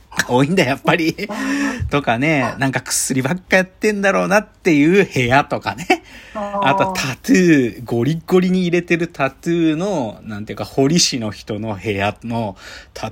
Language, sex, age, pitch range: Japanese, male, 40-59, 105-170 Hz